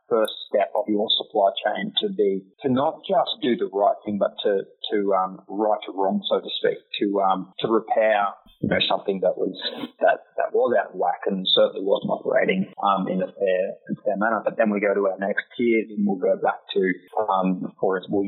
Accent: Australian